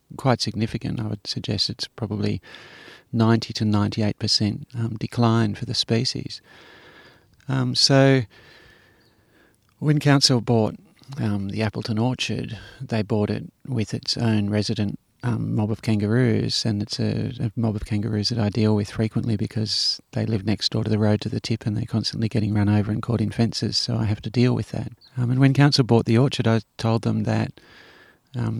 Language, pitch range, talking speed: English, 105-115 Hz, 180 wpm